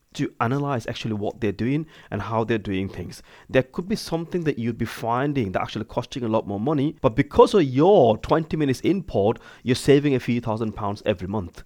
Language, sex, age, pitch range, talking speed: English, male, 30-49, 110-145 Hz, 210 wpm